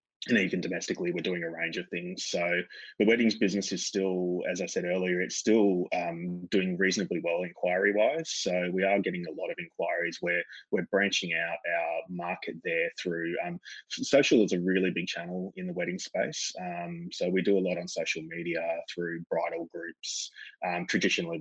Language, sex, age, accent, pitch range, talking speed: English, male, 20-39, Australian, 90-110 Hz, 190 wpm